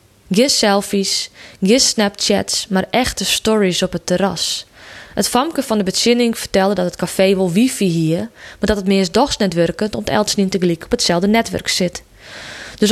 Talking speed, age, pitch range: 165 wpm, 20-39, 185-225 Hz